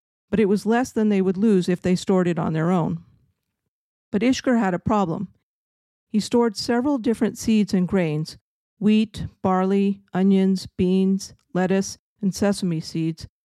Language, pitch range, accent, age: English, 180-215 Hz, American, 50-69